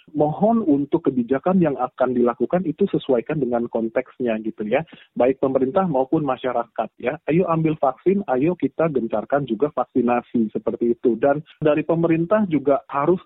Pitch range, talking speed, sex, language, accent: 135-175 Hz, 145 wpm, male, Indonesian, native